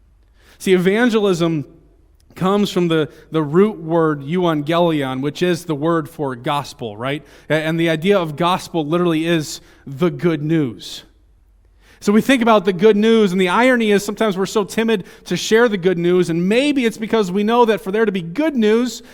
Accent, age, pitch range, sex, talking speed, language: American, 30-49, 130-195 Hz, male, 185 wpm, English